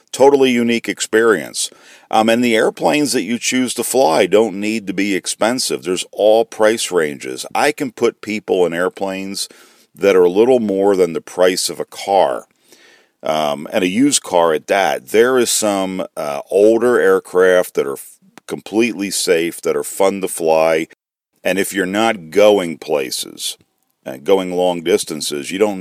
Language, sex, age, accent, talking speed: English, male, 50-69, American, 165 wpm